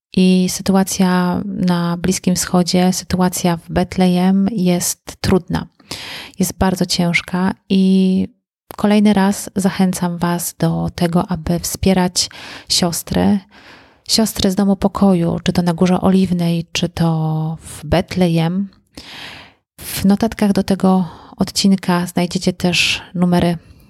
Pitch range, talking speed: 175-195 Hz, 110 wpm